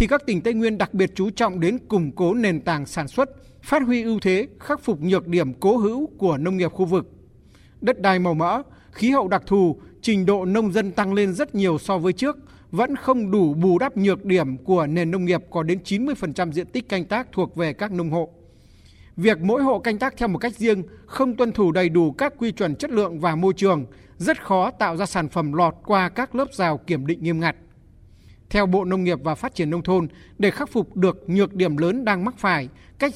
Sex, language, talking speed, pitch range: male, Vietnamese, 235 wpm, 175-225 Hz